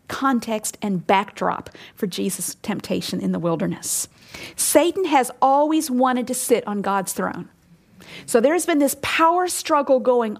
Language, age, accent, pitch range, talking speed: English, 50-69, American, 205-285 Hz, 150 wpm